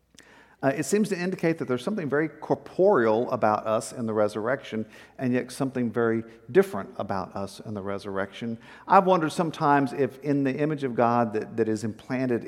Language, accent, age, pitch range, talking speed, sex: English, American, 50-69, 115-150 Hz, 185 wpm, male